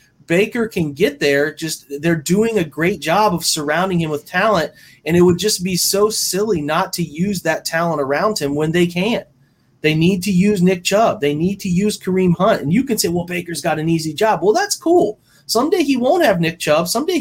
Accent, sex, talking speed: American, male, 225 wpm